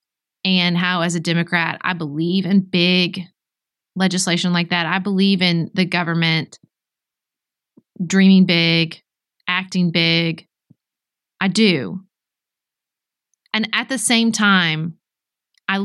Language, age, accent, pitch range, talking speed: English, 30-49, American, 170-205 Hz, 110 wpm